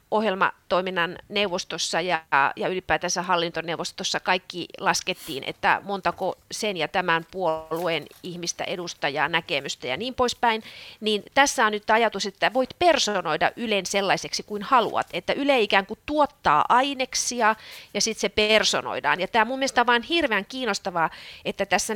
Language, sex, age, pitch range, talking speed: Finnish, female, 30-49, 190-255 Hz, 140 wpm